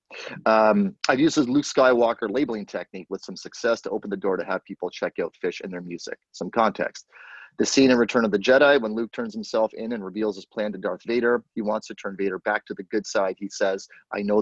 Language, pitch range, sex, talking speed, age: English, 100-125 Hz, male, 245 wpm, 30-49